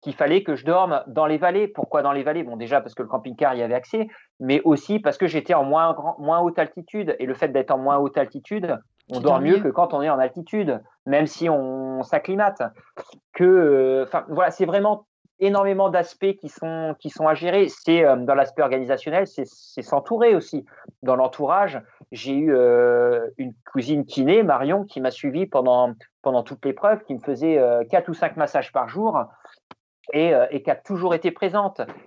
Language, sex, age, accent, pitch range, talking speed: French, male, 30-49, French, 135-180 Hz, 200 wpm